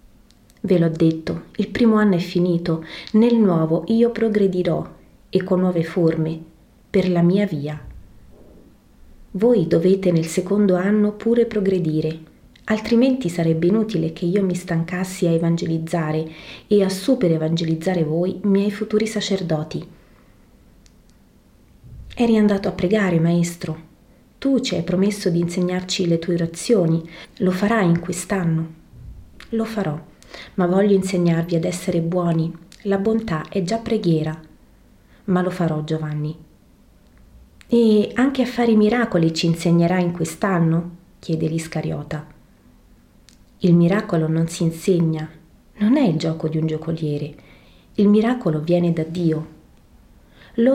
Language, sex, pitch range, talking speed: Italian, female, 165-205 Hz, 130 wpm